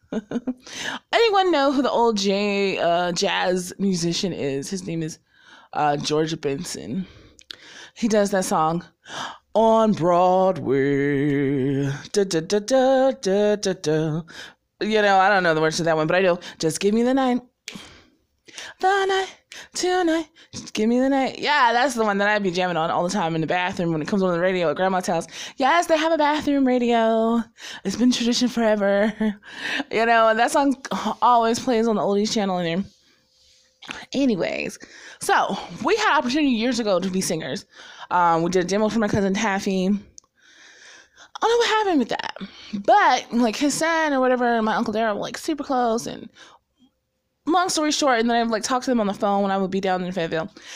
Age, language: 20-39, English